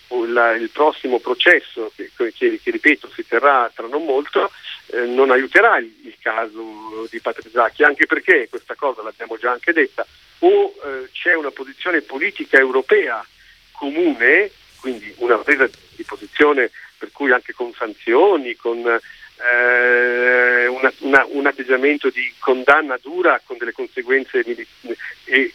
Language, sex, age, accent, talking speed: Italian, male, 50-69, native, 145 wpm